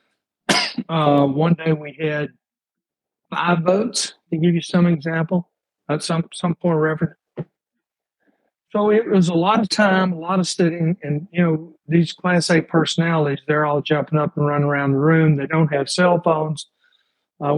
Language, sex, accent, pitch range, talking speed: English, male, American, 145-175 Hz, 165 wpm